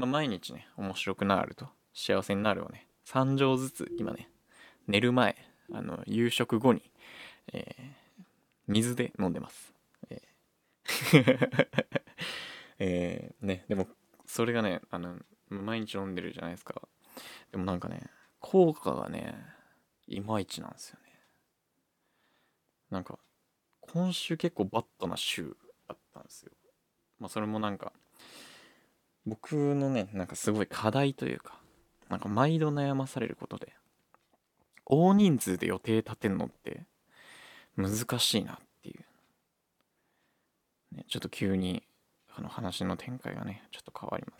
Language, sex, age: Japanese, male, 20-39